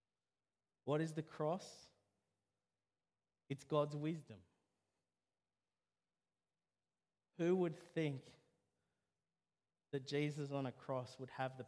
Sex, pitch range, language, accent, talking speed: male, 100-145 Hz, English, Australian, 90 wpm